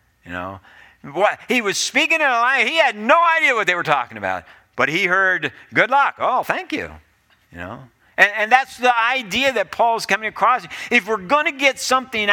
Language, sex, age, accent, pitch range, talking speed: English, male, 50-69, American, 155-230 Hz, 210 wpm